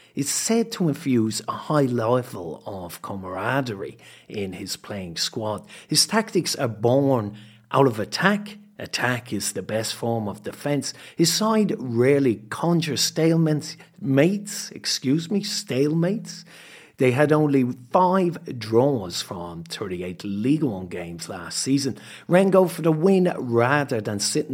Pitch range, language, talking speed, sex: 110-165 Hz, English, 135 wpm, male